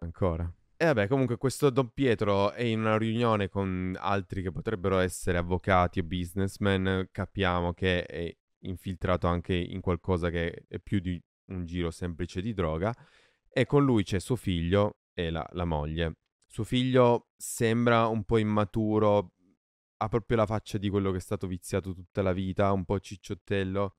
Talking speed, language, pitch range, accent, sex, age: 170 wpm, Italian, 90-105 Hz, native, male, 20-39